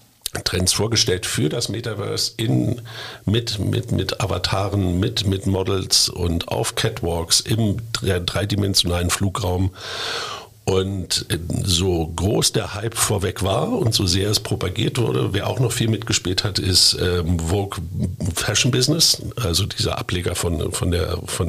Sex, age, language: male, 50-69, German